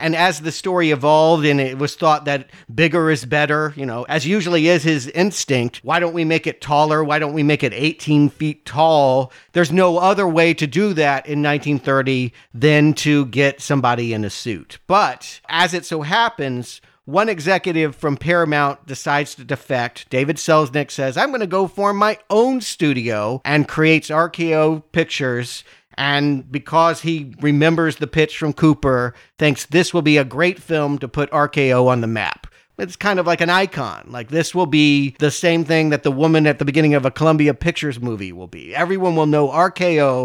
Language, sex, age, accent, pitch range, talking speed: English, male, 50-69, American, 140-165 Hz, 190 wpm